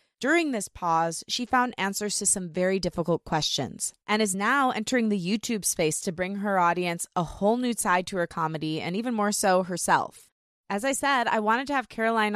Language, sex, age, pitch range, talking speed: English, female, 20-39, 180-230 Hz, 205 wpm